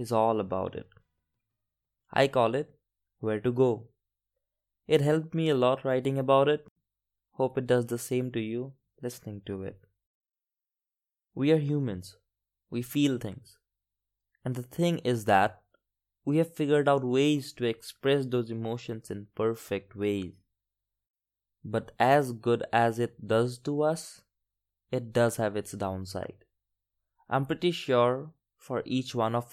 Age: 20-39